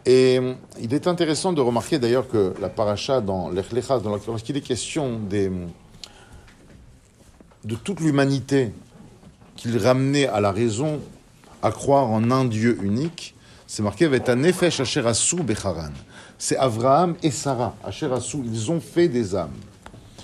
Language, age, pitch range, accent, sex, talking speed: French, 50-69, 110-135 Hz, French, male, 135 wpm